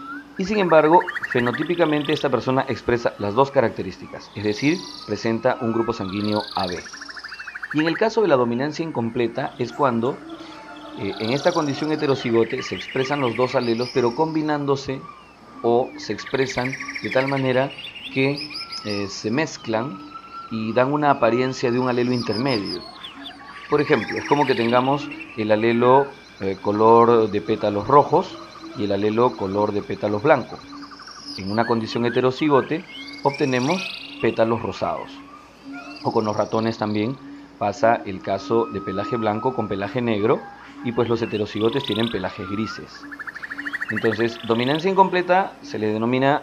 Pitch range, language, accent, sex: 110-140 Hz, Spanish, Mexican, male